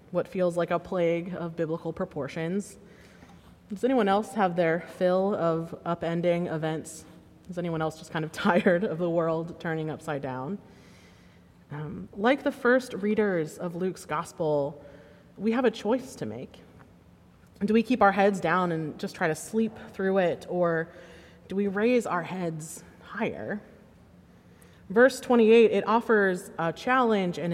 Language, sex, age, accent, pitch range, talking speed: English, female, 20-39, American, 160-205 Hz, 155 wpm